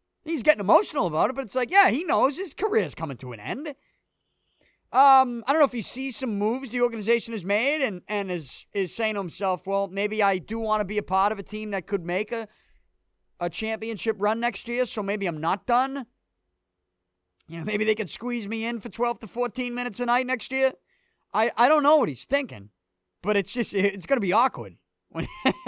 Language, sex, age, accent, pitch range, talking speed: English, male, 30-49, American, 150-220 Hz, 225 wpm